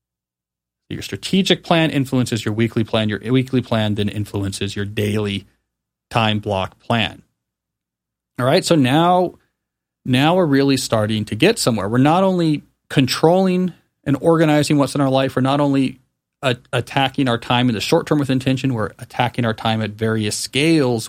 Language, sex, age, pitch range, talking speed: English, male, 40-59, 110-150 Hz, 160 wpm